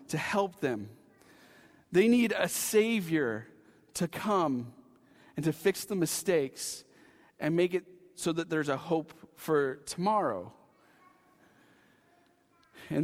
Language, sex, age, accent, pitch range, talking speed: English, male, 40-59, American, 170-205 Hz, 115 wpm